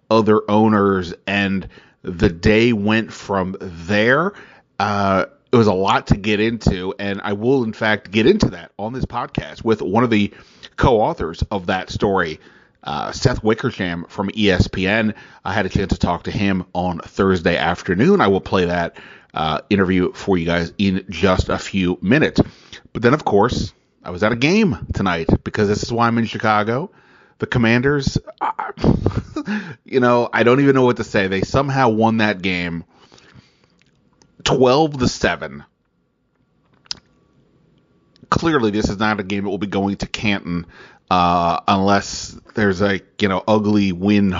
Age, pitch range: 30-49, 95-110 Hz